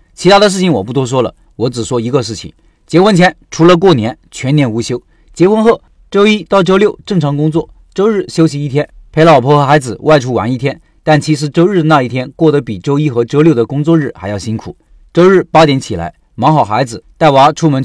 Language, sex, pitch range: Chinese, male, 125-165 Hz